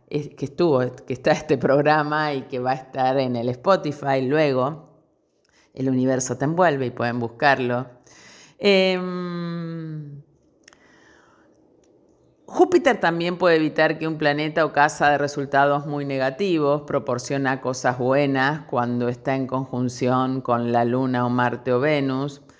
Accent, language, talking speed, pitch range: Argentinian, Spanish, 135 wpm, 120-145 Hz